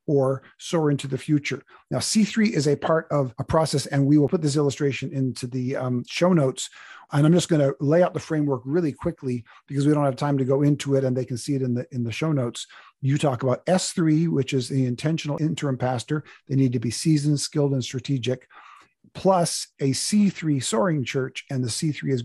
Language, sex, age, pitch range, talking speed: English, male, 50-69, 130-160 Hz, 220 wpm